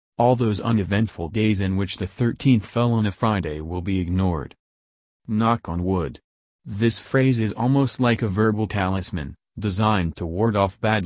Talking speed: 170 wpm